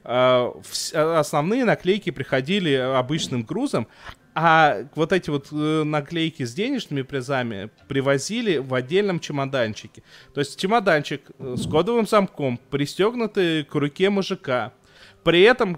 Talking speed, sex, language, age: 110 wpm, male, Russian, 20-39